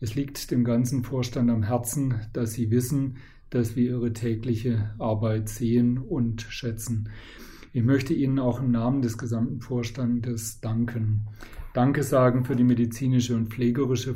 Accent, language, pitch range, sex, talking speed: German, German, 115-130 Hz, male, 150 wpm